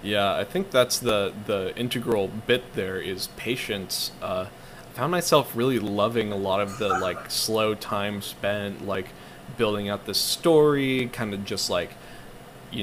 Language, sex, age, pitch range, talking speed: English, male, 20-39, 95-125 Hz, 165 wpm